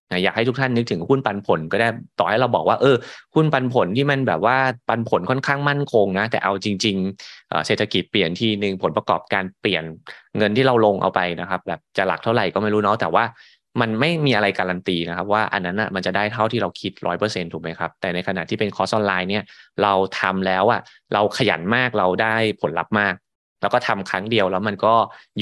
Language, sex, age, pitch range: Thai, male, 20-39, 90-110 Hz